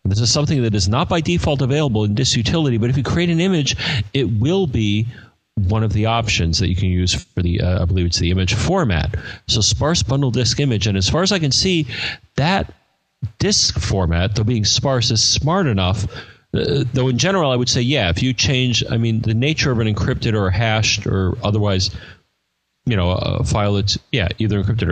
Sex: male